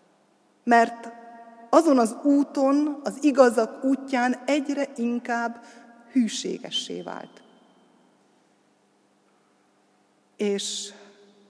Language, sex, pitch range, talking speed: Hungarian, female, 175-235 Hz, 65 wpm